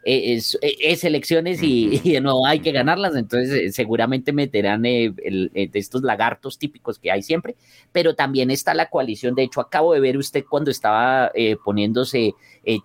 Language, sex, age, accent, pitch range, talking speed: Spanish, male, 30-49, Colombian, 110-145 Hz, 175 wpm